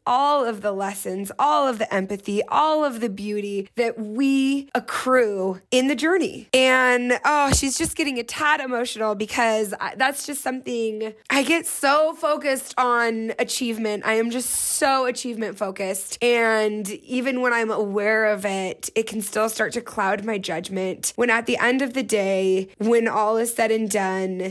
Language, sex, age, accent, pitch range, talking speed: English, female, 20-39, American, 210-265 Hz, 170 wpm